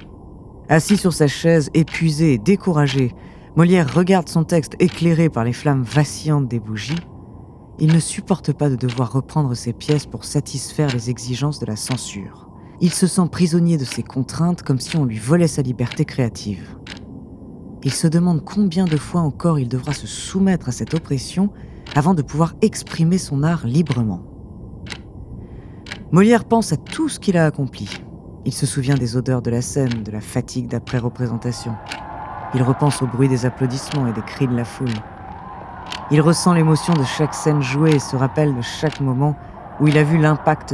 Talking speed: 175 wpm